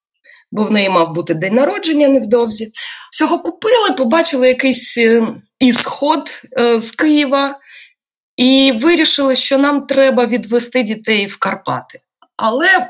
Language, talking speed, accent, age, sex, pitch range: Ukrainian, 115 wpm, native, 20-39, female, 180-260 Hz